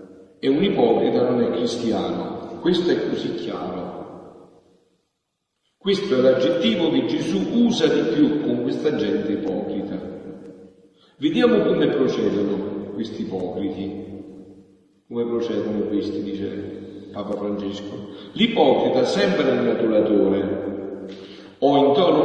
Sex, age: male, 50-69